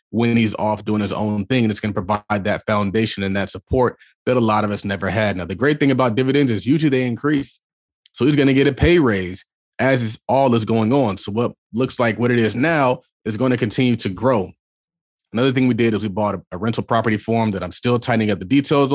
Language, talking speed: English, 250 wpm